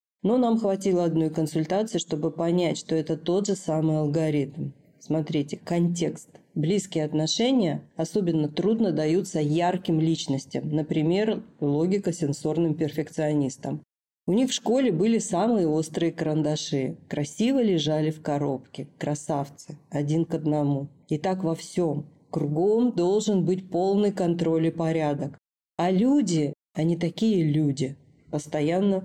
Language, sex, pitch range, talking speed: Russian, female, 150-185 Hz, 120 wpm